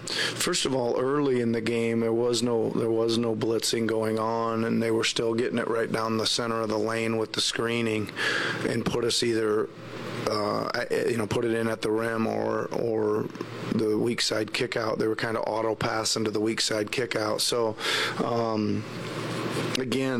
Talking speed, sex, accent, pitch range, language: 200 wpm, male, American, 110-115 Hz, English